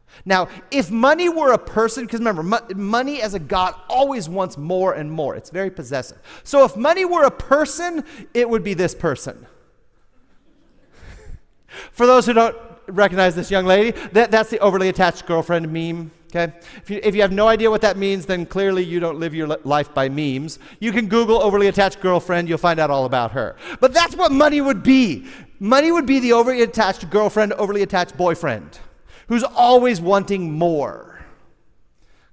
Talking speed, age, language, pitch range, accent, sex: 185 wpm, 40-59, English, 175-240 Hz, American, male